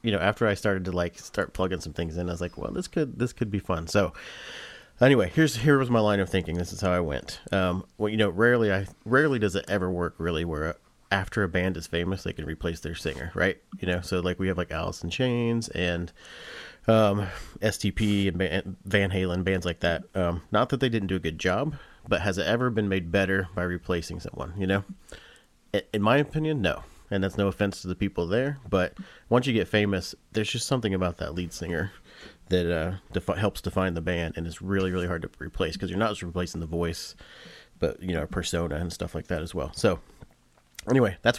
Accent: American